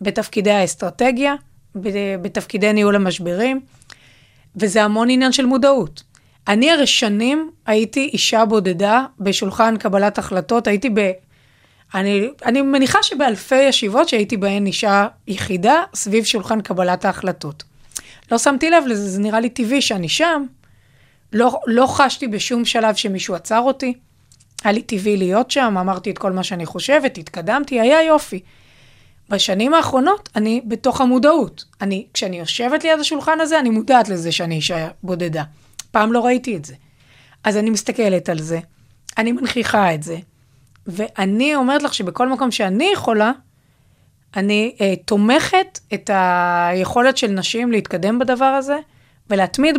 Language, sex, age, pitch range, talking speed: Hebrew, female, 30-49, 185-250 Hz, 135 wpm